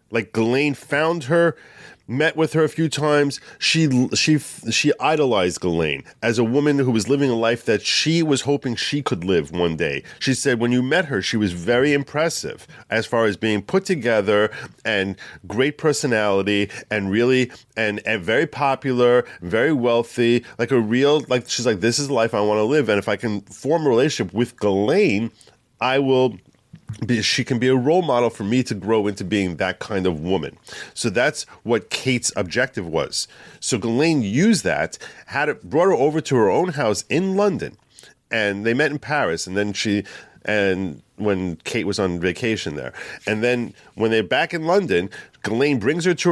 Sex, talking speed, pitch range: male, 190 wpm, 105-145 Hz